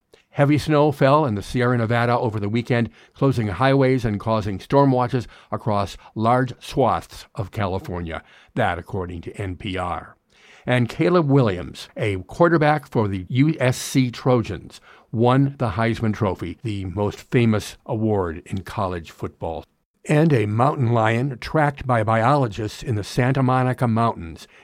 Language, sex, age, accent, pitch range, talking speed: English, male, 50-69, American, 105-140 Hz, 140 wpm